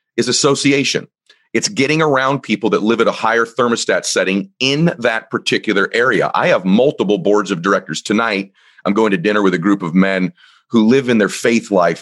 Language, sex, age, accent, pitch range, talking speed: English, male, 40-59, American, 110-155 Hz, 195 wpm